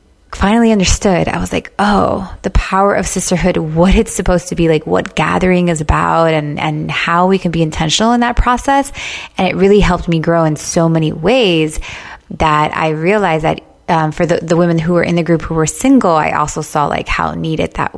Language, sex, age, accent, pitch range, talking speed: English, female, 20-39, American, 160-190 Hz, 215 wpm